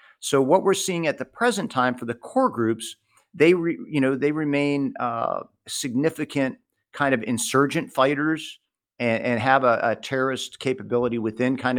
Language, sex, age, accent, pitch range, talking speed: English, male, 50-69, American, 110-135 Hz, 165 wpm